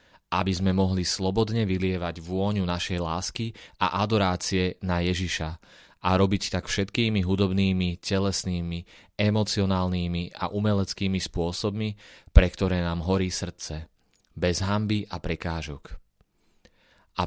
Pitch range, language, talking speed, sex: 90-100 Hz, Slovak, 110 wpm, male